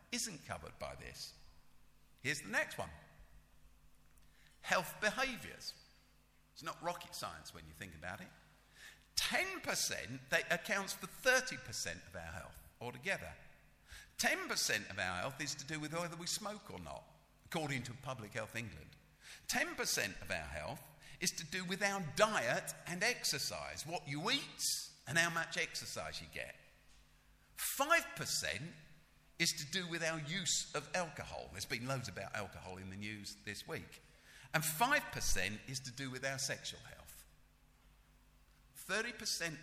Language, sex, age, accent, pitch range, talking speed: English, male, 50-69, British, 100-170 Hz, 145 wpm